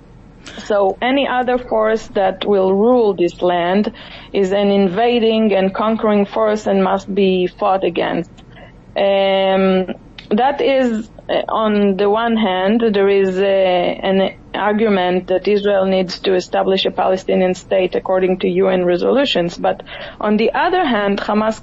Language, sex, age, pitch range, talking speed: English, female, 30-49, 195-230 Hz, 135 wpm